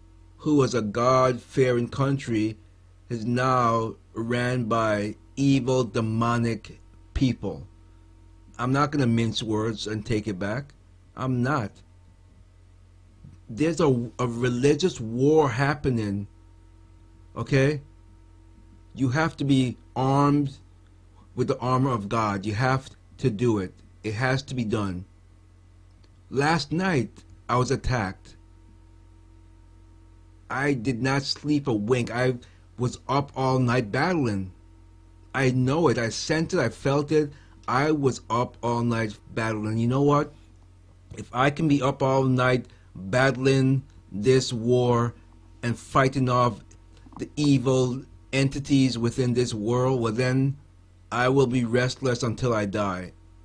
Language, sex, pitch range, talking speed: English, male, 90-130 Hz, 130 wpm